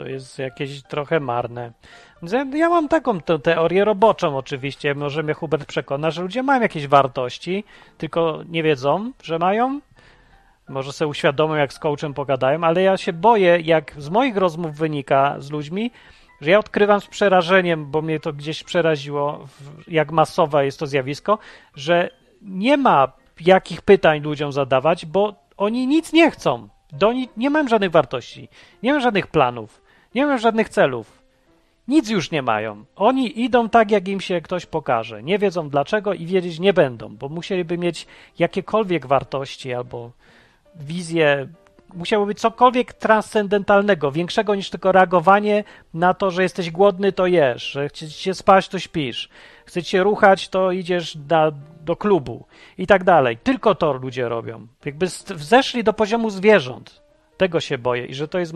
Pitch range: 145-205 Hz